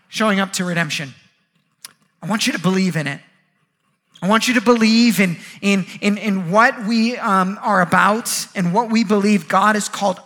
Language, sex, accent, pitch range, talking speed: English, male, American, 185-230 Hz, 185 wpm